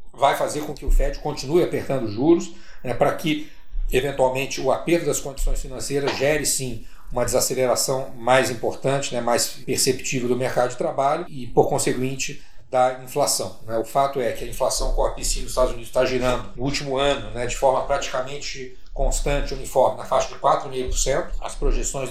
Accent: Brazilian